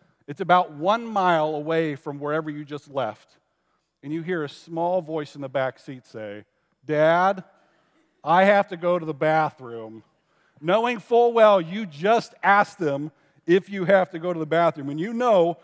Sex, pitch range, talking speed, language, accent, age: male, 145-190 Hz, 180 wpm, English, American, 50-69